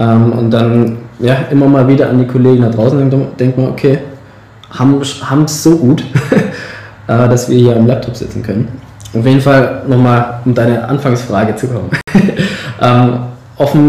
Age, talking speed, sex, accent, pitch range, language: 20-39, 150 wpm, male, German, 115-135 Hz, German